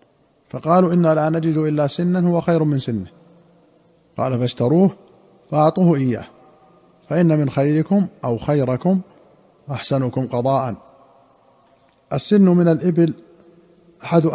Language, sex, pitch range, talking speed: Arabic, male, 140-165 Hz, 105 wpm